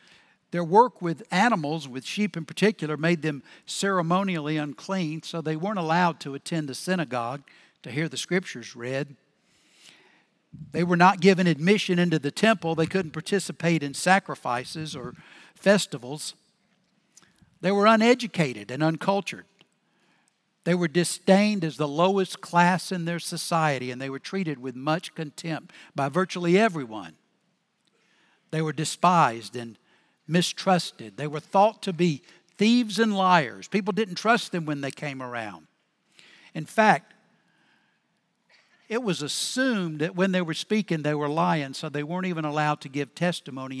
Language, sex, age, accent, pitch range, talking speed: English, male, 60-79, American, 150-195 Hz, 145 wpm